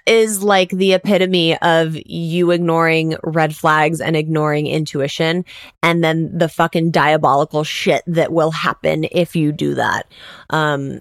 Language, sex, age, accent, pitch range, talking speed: English, female, 20-39, American, 155-185 Hz, 140 wpm